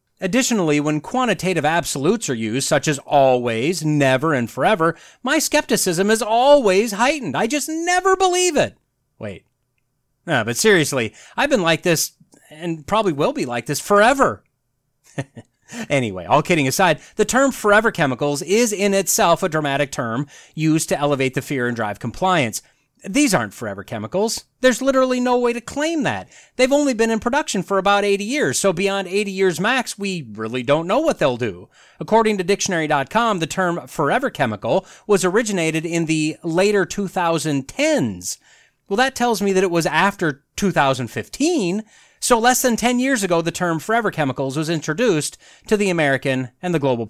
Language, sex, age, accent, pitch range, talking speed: English, male, 30-49, American, 145-225 Hz, 165 wpm